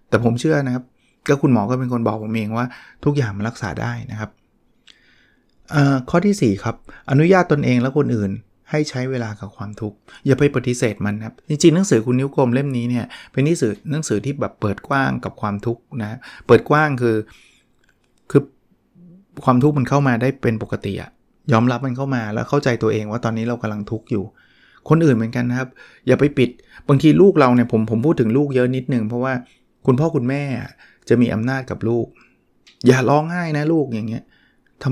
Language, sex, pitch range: Thai, male, 120-145 Hz